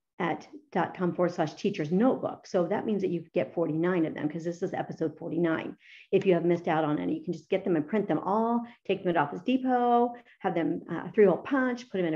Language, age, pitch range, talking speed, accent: English, 50-69, 170-225 Hz, 250 wpm, American